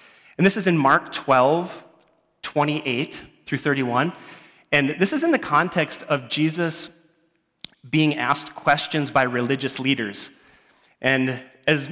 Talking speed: 125 wpm